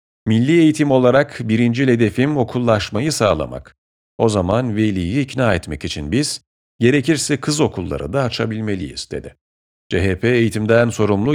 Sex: male